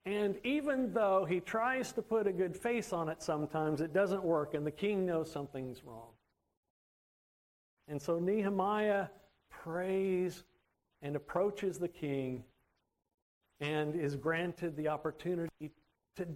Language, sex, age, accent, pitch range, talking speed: English, male, 50-69, American, 155-230 Hz, 130 wpm